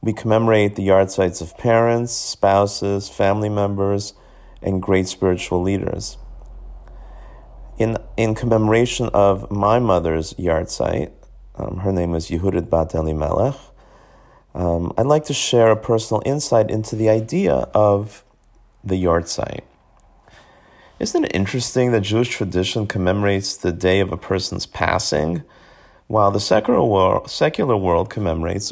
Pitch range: 95-115 Hz